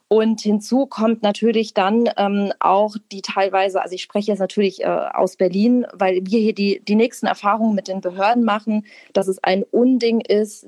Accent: German